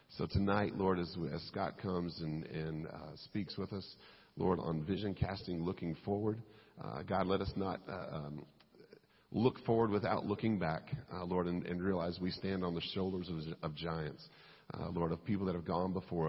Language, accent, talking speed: English, American, 195 wpm